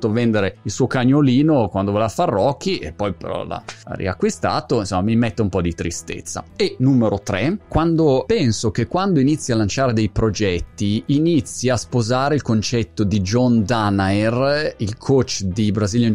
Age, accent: 20-39, native